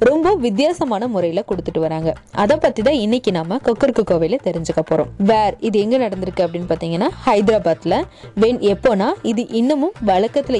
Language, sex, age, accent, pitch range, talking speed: Tamil, female, 20-39, native, 180-255 Hz, 95 wpm